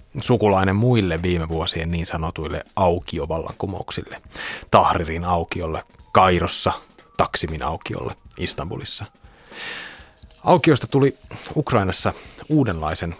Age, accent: 30-49, native